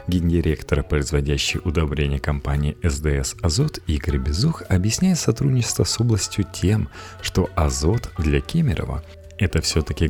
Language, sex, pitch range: Russian, male, 75-100 Hz